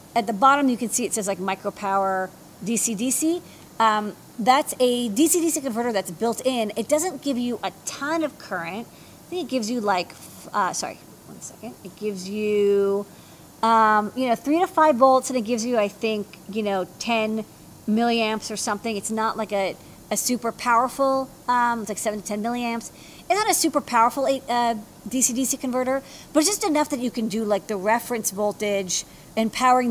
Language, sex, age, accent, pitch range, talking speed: English, female, 40-59, American, 205-255 Hz, 195 wpm